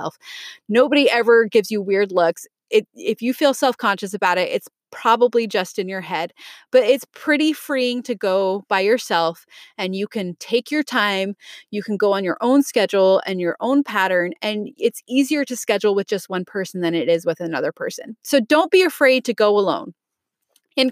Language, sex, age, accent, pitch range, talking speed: English, female, 30-49, American, 210-300 Hz, 190 wpm